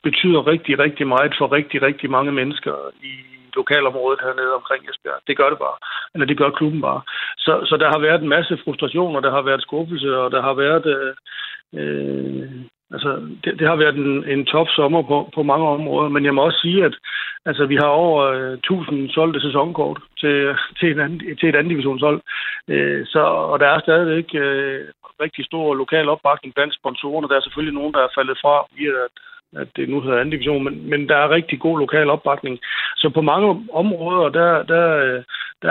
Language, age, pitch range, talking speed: Danish, 60-79, 135-155 Hz, 200 wpm